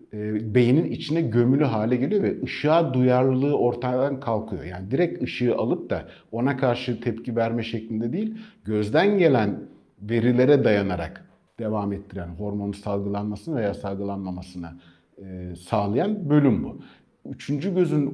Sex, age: male, 50-69